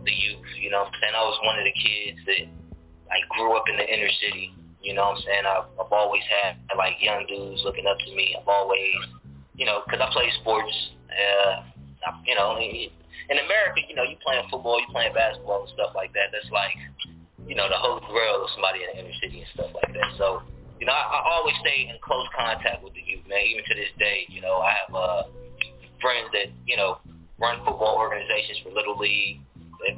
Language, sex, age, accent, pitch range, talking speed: English, male, 20-39, American, 70-105 Hz, 230 wpm